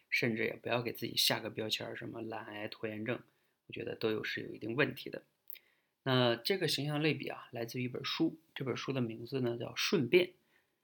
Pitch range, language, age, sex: 115-145 Hz, Chinese, 20-39, male